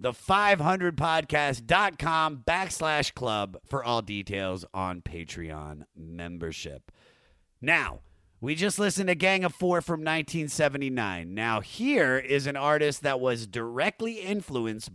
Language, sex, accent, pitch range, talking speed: English, male, American, 115-180 Hz, 110 wpm